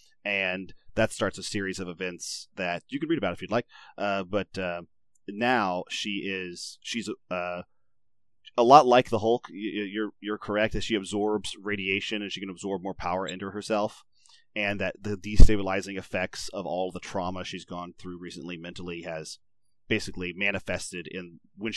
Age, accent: 30-49, American